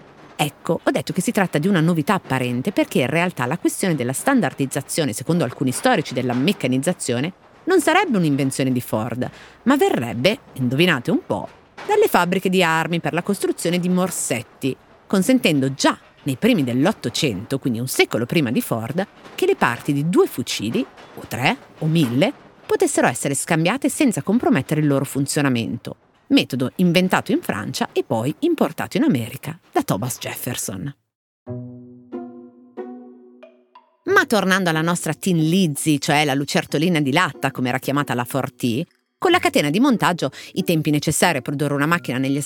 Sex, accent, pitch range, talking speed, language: female, native, 135-190 Hz, 160 wpm, Italian